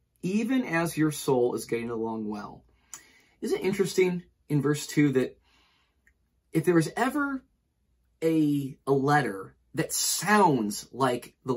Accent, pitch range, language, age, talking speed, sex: American, 130-170 Hz, English, 30-49, 135 wpm, male